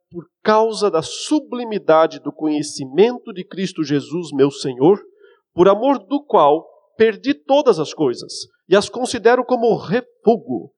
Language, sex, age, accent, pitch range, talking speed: Portuguese, male, 50-69, Brazilian, 160-245 Hz, 135 wpm